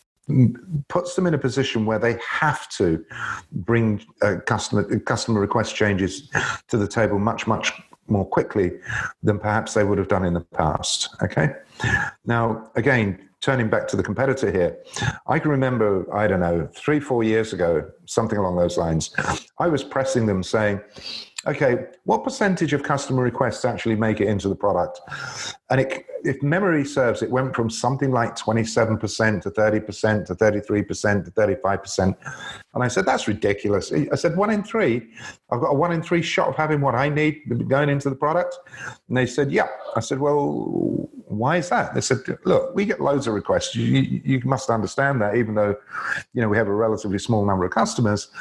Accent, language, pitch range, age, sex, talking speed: British, English, 105-140 Hz, 50-69, male, 180 wpm